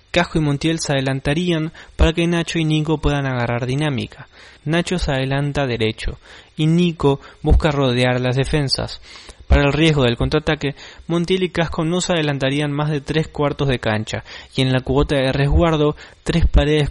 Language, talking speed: Spanish, 170 wpm